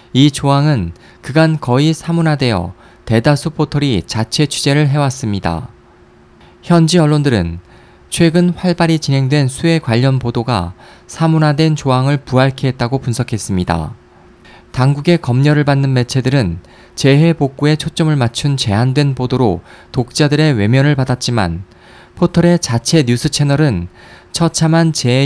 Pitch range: 120-155 Hz